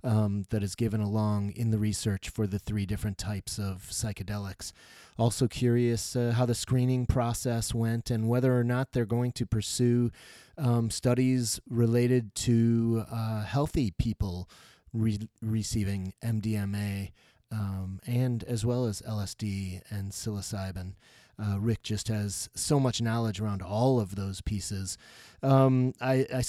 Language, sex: English, male